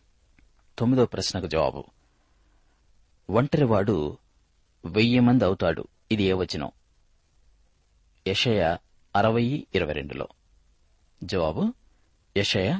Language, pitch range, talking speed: Telugu, 80-115 Hz, 55 wpm